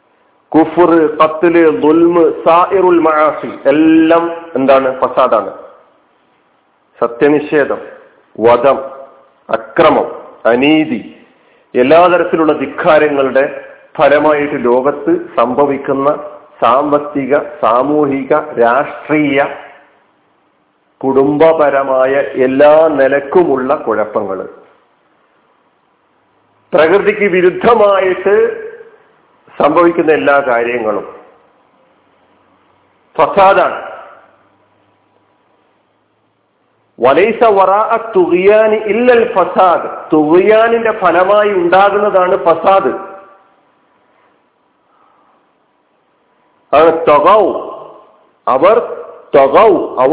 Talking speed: 35 wpm